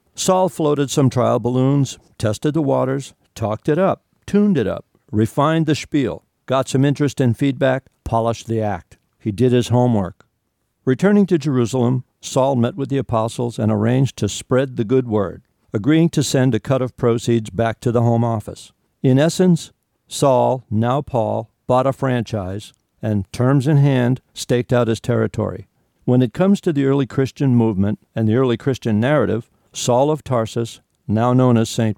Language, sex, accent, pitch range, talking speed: English, male, American, 115-135 Hz, 175 wpm